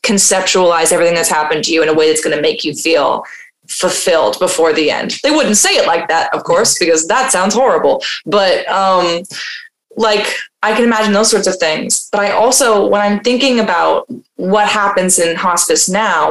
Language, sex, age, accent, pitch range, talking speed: English, female, 20-39, American, 170-235 Hz, 195 wpm